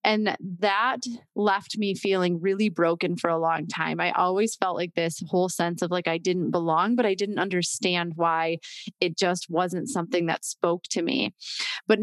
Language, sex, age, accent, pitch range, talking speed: English, female, 20-39, American, 180-215 Hz, 185 wpm